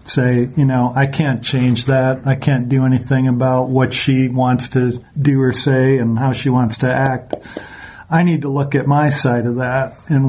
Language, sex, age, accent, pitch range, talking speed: English, male, 50-69, American, 130-150 Hz, 205 wpm